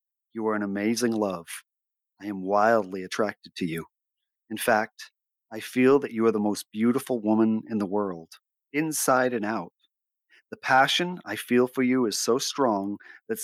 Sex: male